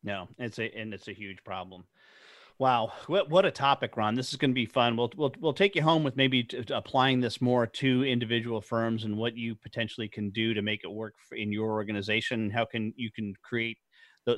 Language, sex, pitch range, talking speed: English, male, 105-135 Hz, 230 wpm